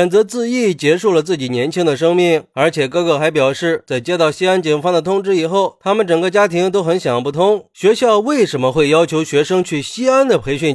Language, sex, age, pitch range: Chinese, male, 30-49, 145-185 Hz